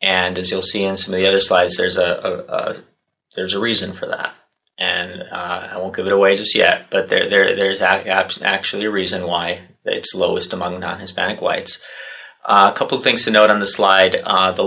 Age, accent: 30-49, American